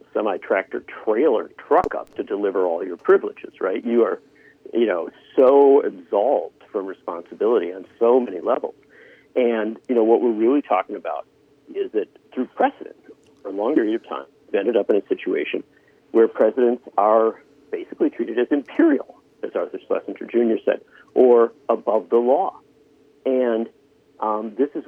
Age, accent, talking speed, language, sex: 50-69, American, 160 wpm, English, male